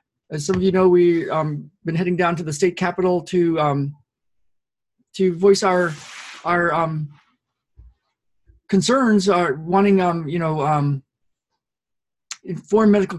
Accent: American